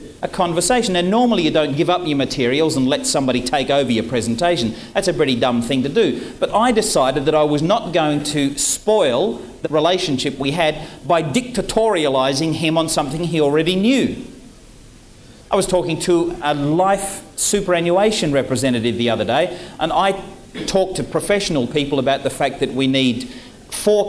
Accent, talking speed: Australian, 175 wpm